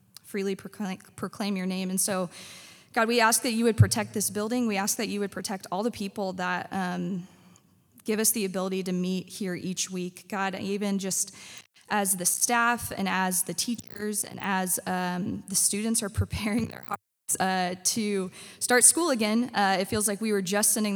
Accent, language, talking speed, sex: American, English, 190 wpm, female